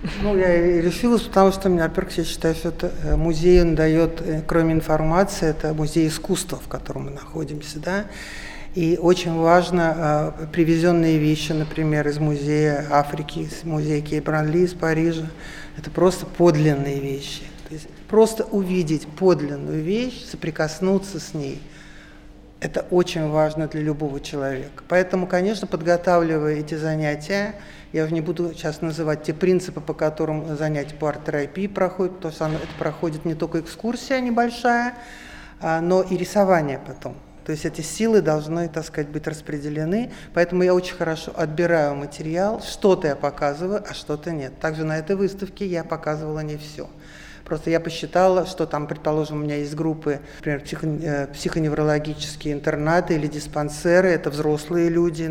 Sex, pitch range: male, 150-180 Hz